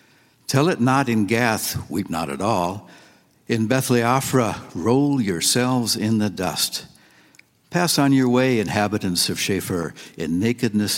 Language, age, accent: English, 60-79, American